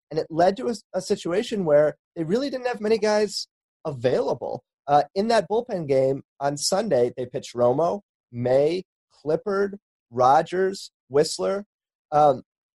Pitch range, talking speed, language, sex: 145-205 Hz, 140 wpm, English, male